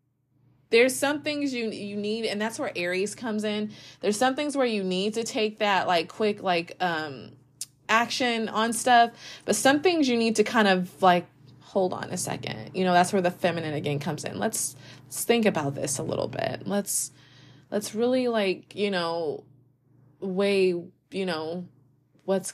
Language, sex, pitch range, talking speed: English, female, 150-205 Hz, 180 wpm